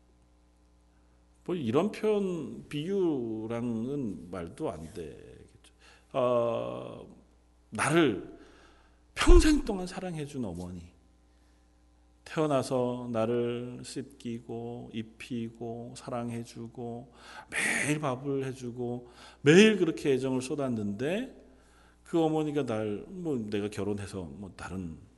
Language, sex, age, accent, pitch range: Korean, male, 40-59, native, 105-145 Hz